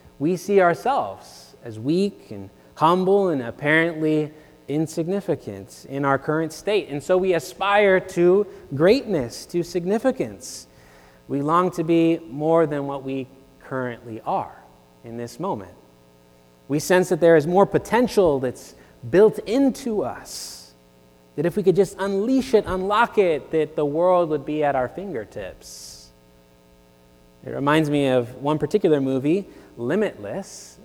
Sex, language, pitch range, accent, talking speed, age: male, English, 125-175 Hz, American, 140 wpm, 20-39